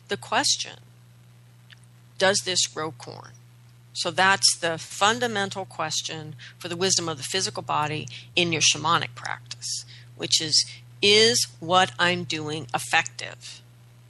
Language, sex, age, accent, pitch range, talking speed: English, female, 40-59, American, 120-175 Hz, 125 wpm